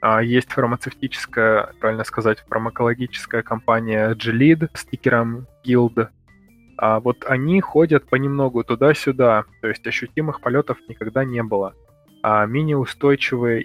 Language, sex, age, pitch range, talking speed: Russian, male, 20-39, 115-130 Hz, 110 wpm